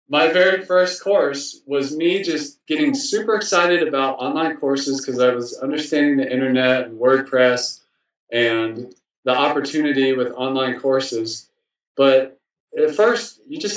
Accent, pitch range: American, 125-175 Hz